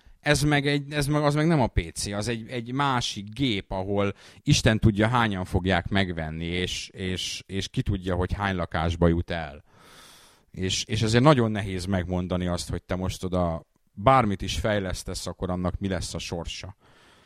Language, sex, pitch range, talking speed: Hungarian, male, 85-110 Hz, 175 wpm